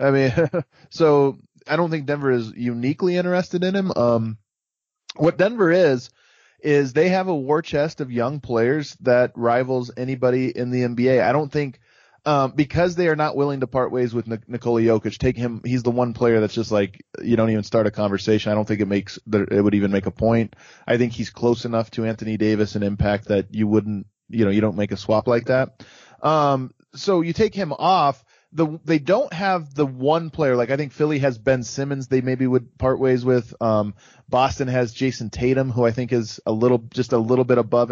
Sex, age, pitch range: male, 20-39, 115-145 Hz